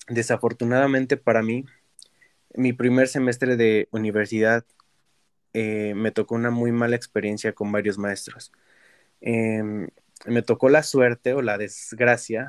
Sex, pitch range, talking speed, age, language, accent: male, 110-125 Hz, 125 wpm, 20-39, Spanish, Mexican